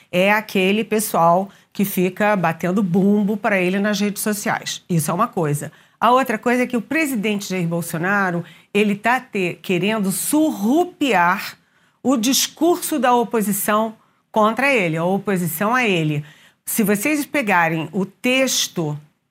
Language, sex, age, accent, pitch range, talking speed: Portuguese, female, 40-59, Brazilian, 185-255 Hz, 135 wpm